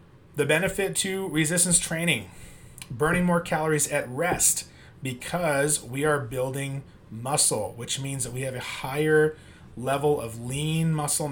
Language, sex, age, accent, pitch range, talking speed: English, male, 30-49, American, 125-155 Hz, 140 wpm